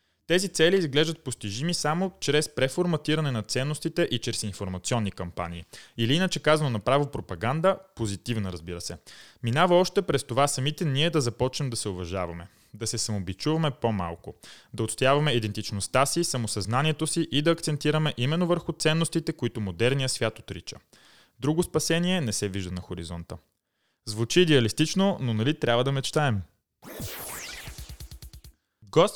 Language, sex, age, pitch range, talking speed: Bulgarian, male, 20-39, 105-155 Hz, 140 wpm